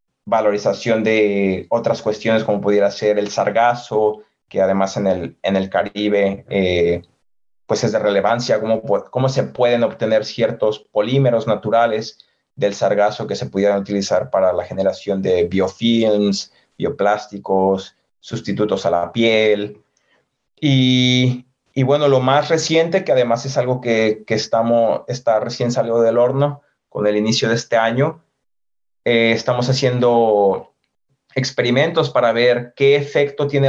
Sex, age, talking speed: male, 30-49, 135 wpm